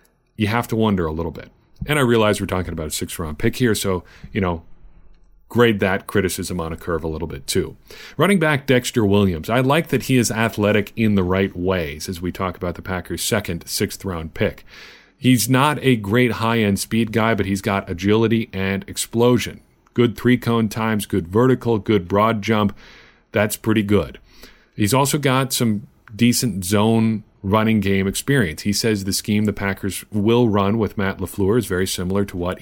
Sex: male